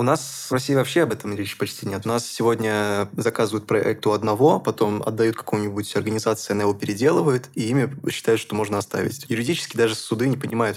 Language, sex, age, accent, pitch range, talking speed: Russian, male, 20-39, native, 105-120 Hz, 195 wpm